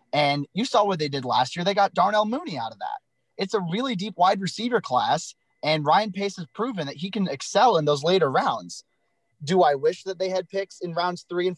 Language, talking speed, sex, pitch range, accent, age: English, 240 wpm, male, 135-180 Hz, American, 30-49